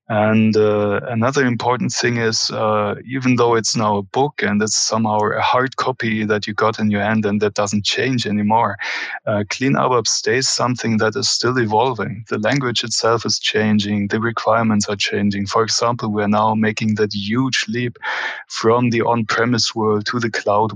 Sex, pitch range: male, 105-115 Hz